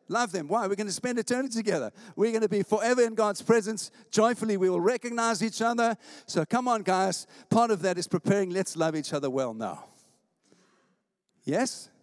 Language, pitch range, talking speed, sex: English, 150-215 Hz, 195 wpm, male